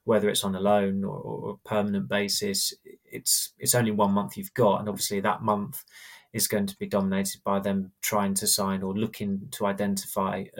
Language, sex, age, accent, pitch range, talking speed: English, male, 20-39, British, 100-125 Hz, 200 wpm